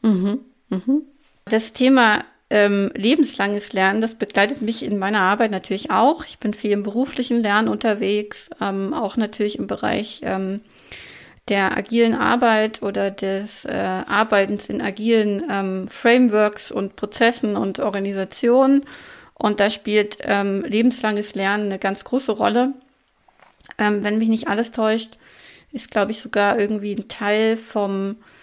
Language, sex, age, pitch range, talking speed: German, female, 30-49, 200-235 Hz, 140 wpm